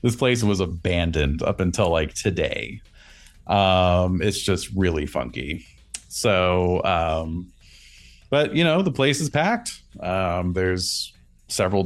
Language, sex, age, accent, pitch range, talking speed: English, male, 30-49, American, 80-100 Hz, 125 wpm